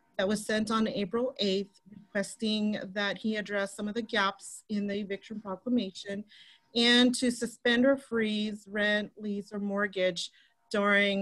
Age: 40-59